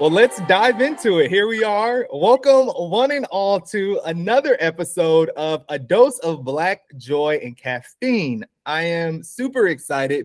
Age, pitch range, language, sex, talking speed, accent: 30-49, 150-210 Hz, English, male, 160 wpm, American